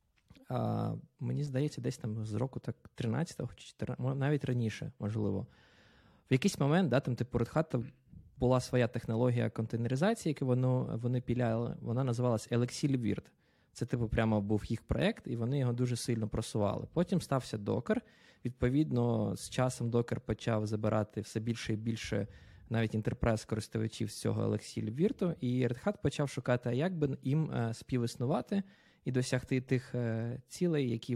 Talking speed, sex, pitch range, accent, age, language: 150 wpm, male, 115-130 Hz, native, 20-39, Ukrainian